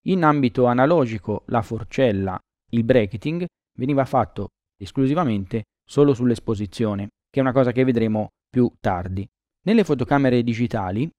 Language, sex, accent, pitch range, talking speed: Italian, male, native, 110-140 Hz, 125 wpm